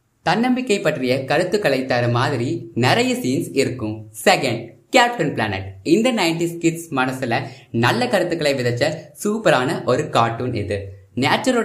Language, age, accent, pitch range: Tamil, 20-39, native, 115-165 Hz